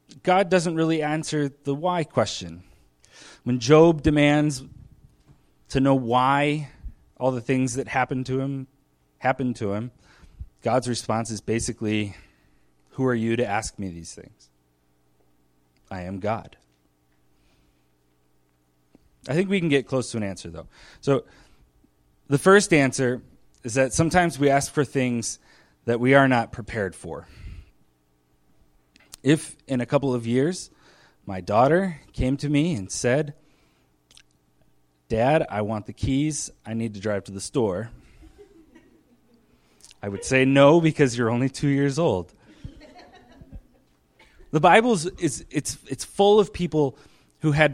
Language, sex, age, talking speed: English, male, 30-49, 140 wpm